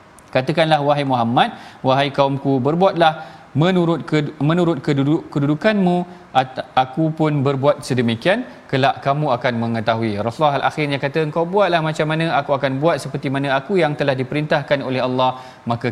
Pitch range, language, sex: 130-160 Hz, Malayalam, male